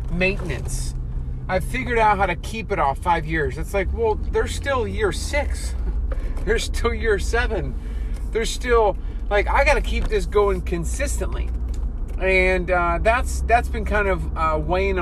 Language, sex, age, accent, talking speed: English, male, 30-49, American, 165 wpm